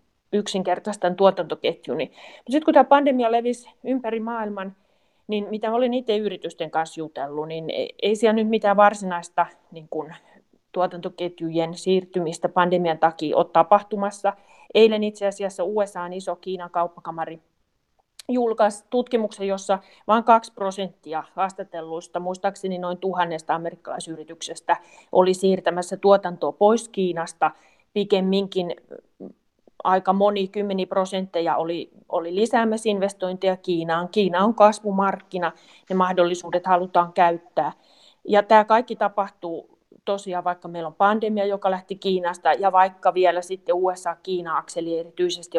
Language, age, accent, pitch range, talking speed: Finnish, 30-49, native, 175-210 Hz, 115 wpm